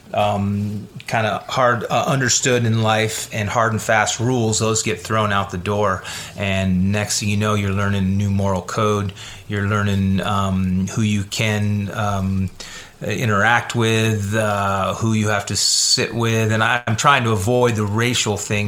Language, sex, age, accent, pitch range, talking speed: English, male, 30-49, American, 100-110 Hz, 165 wpm